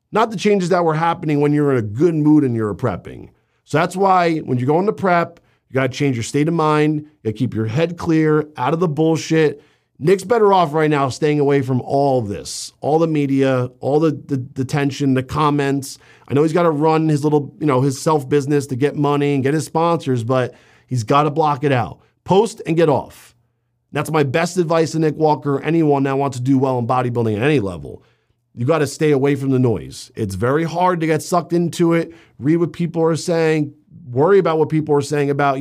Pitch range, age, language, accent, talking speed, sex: 125-160 Hz, 40-59, English, American, 235 wpm, male